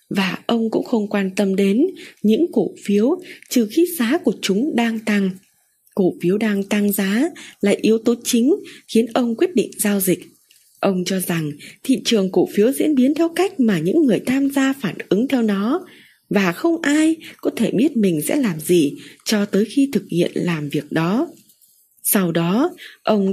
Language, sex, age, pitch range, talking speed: Vietnamese, female, 20-39, 185-270 Hz, 190 wpm